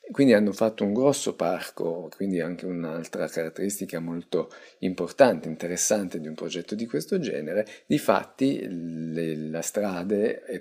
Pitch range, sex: 80-95 Hz, male